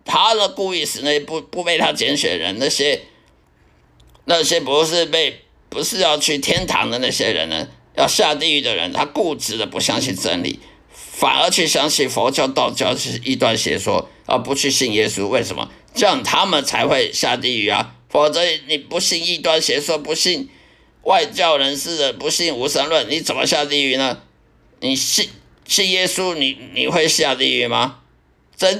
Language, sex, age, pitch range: Chinese, male, 50-69, 135-185 Hz